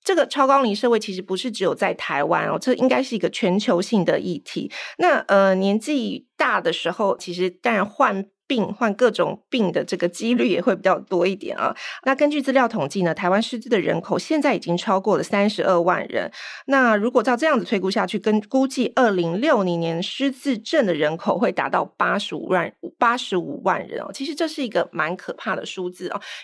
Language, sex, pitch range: Chinese, female, 180-250 Hz